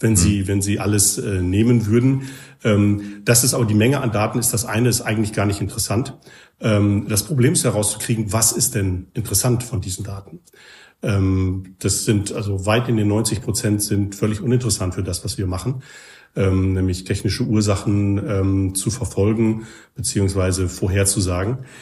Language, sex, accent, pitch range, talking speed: German, male, German, 100-120 Hz, 170 wpm